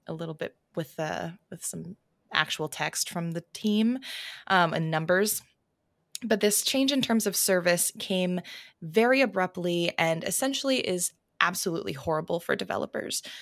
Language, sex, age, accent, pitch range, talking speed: English, female, 20-39, American, 175-220 Hz, 145 wpm